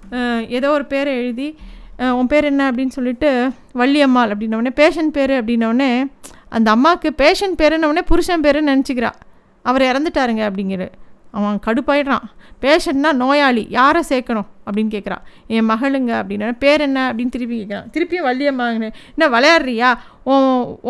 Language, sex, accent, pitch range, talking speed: Tamil, female, native, 240-285 Hz, 140 wpm